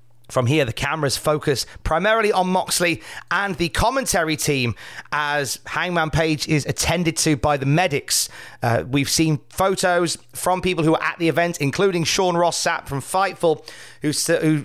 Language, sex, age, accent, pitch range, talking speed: English, male, 30-49, British, 140-175 Hz, 165 wpm